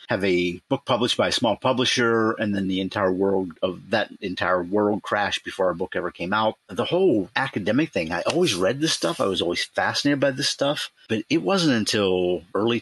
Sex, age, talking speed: male, 50-69, 205 wpm